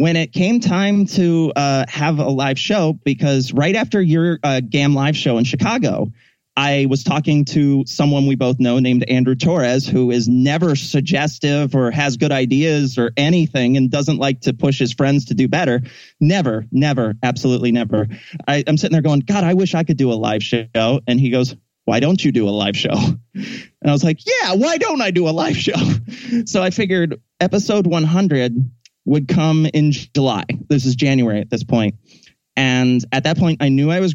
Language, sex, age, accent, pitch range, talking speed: English, male, 30-49, American, 130-160 Hz, 200 wpm